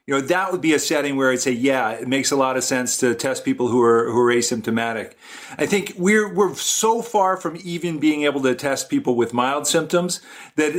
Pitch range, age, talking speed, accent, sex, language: 130-175 Hz, 50-69, 235 wpm, American, male, English